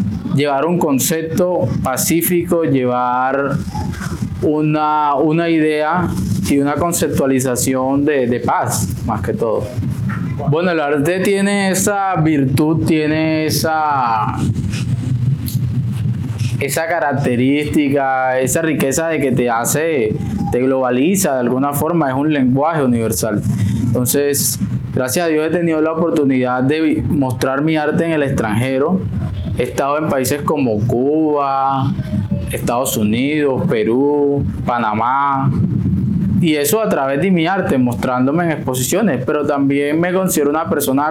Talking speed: 120 wpm